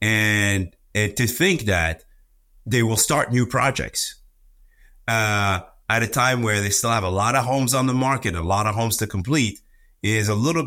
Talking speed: 190 wpm